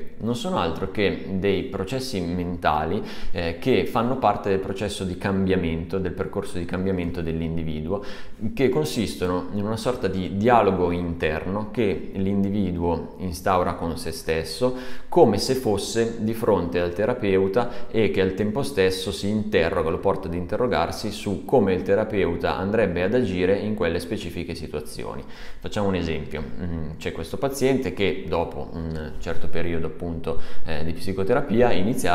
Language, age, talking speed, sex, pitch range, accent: Italian, 20-39, 145 wpm, male, 80-100 Hz, native